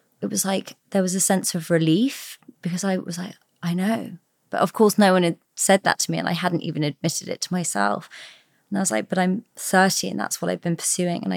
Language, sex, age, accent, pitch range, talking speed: English, female, 20-39, British, 170-200 Hz, 250 wpm